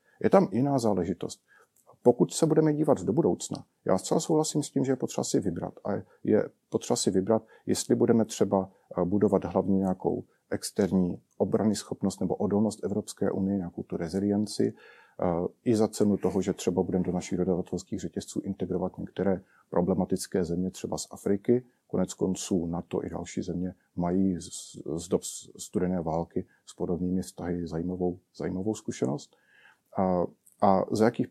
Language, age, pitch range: Czech, 40-59, 95-115 Hz